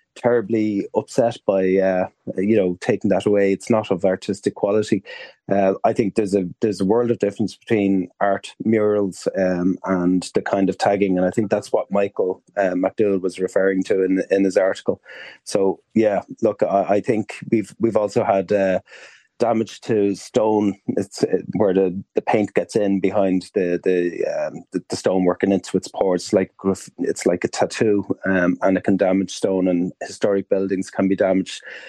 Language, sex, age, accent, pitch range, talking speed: English, male, 30-49, Irish, 90-100 Hz, 185 wpm